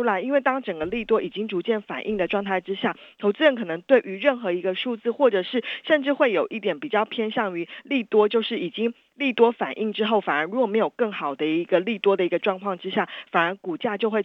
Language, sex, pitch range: Chinese, female, 185-240 Hz